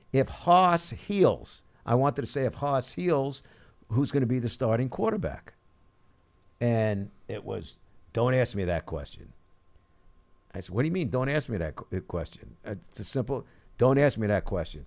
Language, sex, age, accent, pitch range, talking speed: English, male, 50-69, American, 105-145 Hz, 175 wpm